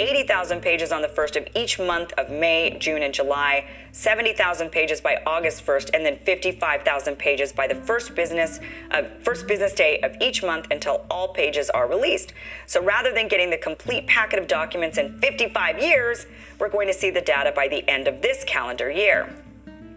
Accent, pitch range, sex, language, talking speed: American, 150-220 Hz, female, English, 185 wpm